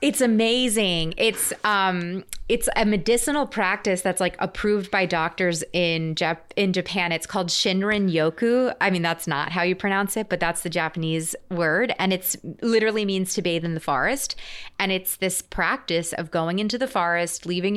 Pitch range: 160-195 Hz